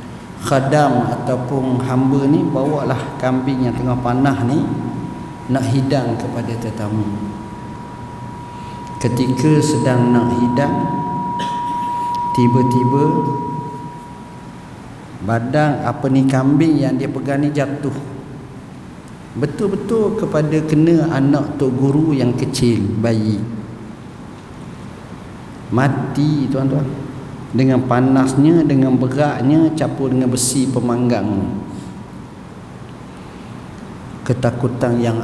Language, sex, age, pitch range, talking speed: Malay, male, 50-69, 115-140 Hz, 85 wpm